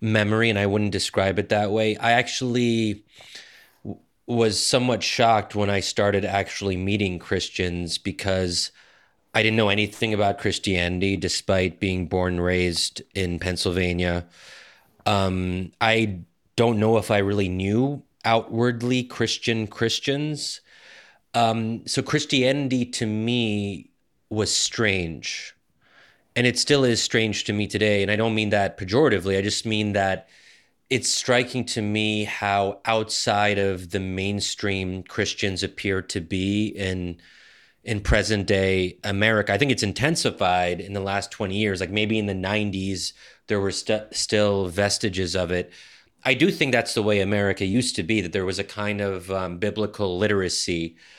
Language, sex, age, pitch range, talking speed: English, male, 30-49, 95-110 Hz, 150 wpm